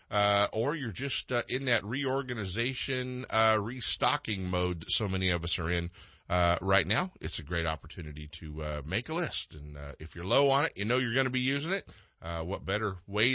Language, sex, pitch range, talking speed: English, male, 85-120 Hz, 220 wpm